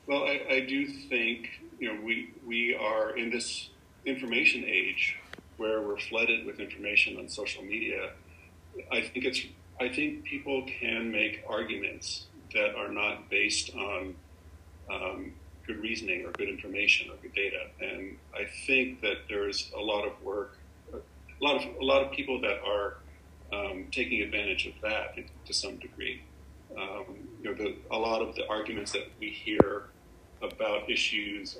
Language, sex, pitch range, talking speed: English, male, 95-130 Hz, 160 wpm